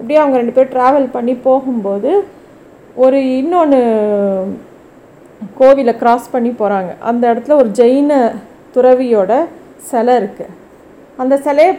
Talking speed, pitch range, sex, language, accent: 110 wpm, 215-265 Hz, female, Tamil, native